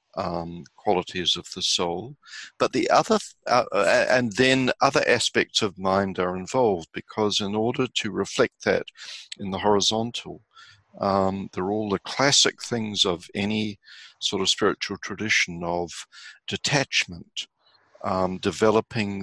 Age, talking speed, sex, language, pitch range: 60-79, 130 wpm, male, English, 90-110 Hz